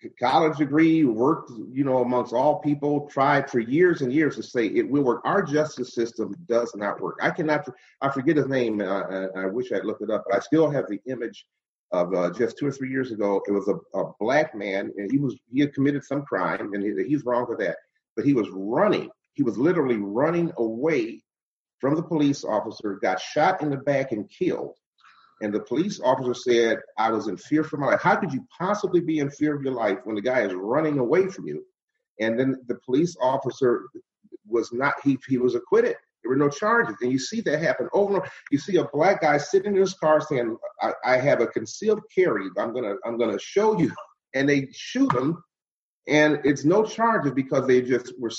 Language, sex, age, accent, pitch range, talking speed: English, male, 40-59, American, 125-190 Hz, 220 wpm